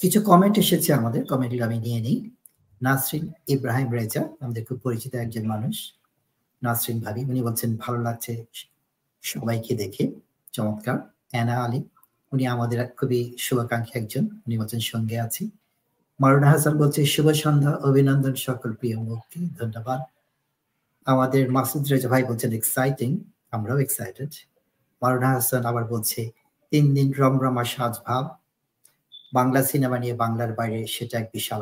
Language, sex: Bengali, male